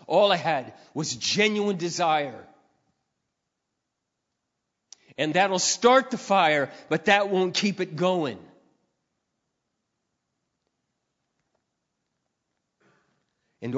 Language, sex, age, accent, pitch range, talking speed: English, male, 40-59, American, 185-255 Hz, 80 wpm